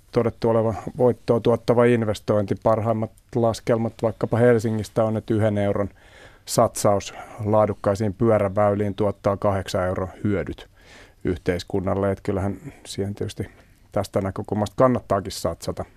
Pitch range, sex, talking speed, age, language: 100-115 Hz, male, 110 wpm, 30-49, Finnish